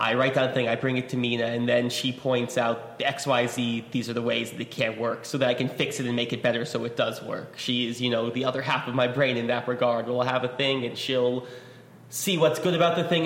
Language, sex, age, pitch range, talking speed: English, male, 20-39, 120-140 Hz, 300 wpm